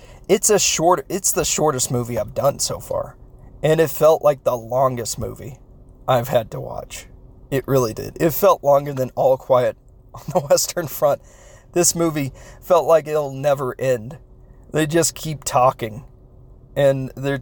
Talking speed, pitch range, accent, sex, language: 165 wpm, 125-145 Hz, American, male, English